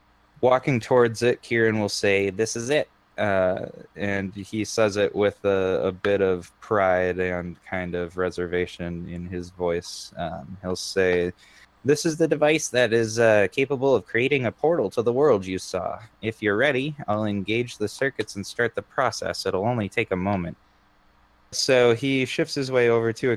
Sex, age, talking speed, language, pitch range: male, 20-39, 180 wpm, English, 95-110 Hz